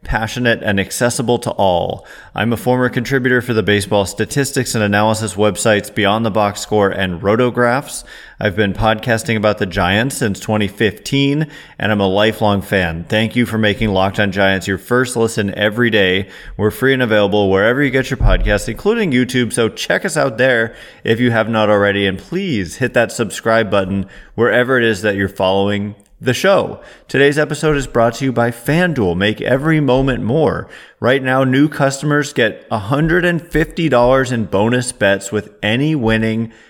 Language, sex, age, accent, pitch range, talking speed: English, male, 30-49, American, 105-130 Hz, 175 wpm